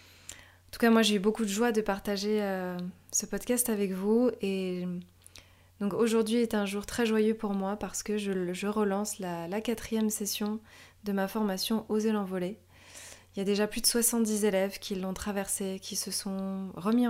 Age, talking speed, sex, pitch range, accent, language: 20-39, 195 wpm, female, 180-210 Hz, French, French